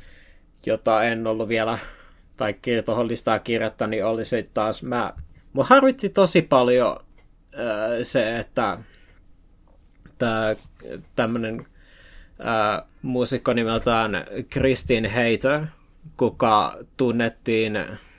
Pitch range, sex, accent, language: 105-125 Hz, male, native, Finnish